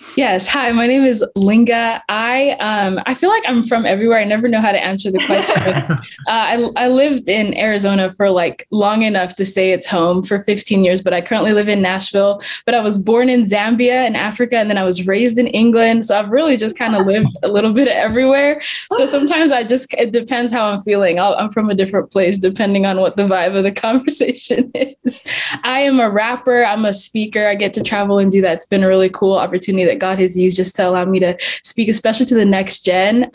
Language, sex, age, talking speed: English, female, 10-29, 235 wpm